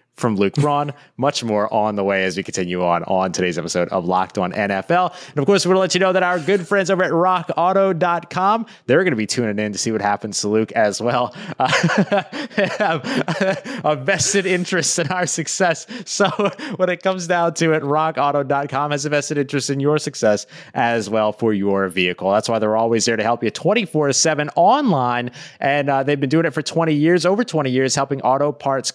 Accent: American